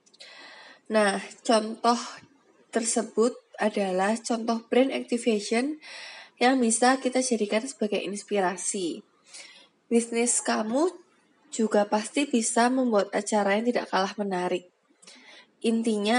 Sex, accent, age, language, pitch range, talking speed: female, native, 20-39, Indonesian, 210-250 Hz, 95 wpm